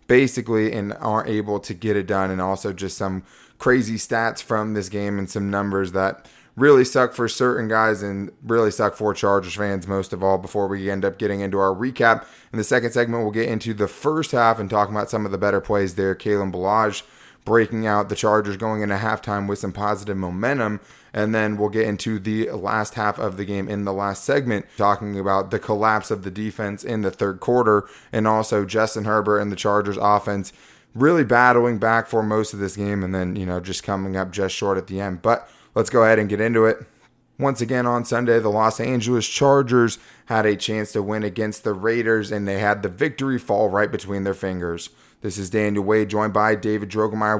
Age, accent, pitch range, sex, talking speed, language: 20-39, American, 100-115 Hz, male, 215 wpm, English